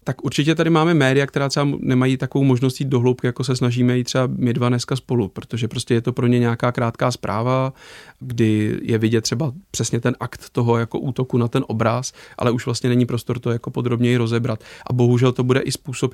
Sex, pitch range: male, 115-130 Hz